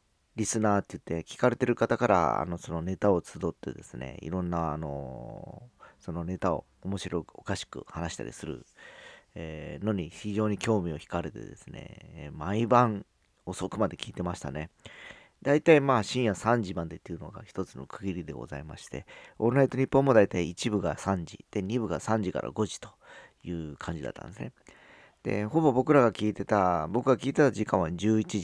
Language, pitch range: Japanese, 85-115 Hz